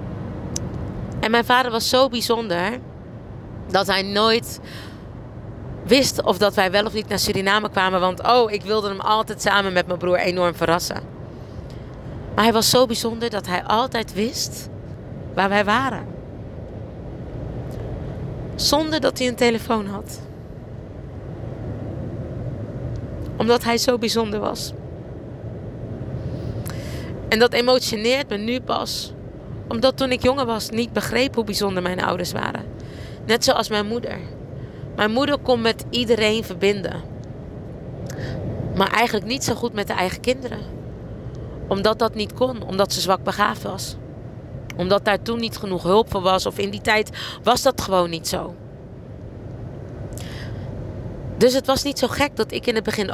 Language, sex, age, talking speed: Dutch, female, 30-49, 145 wpm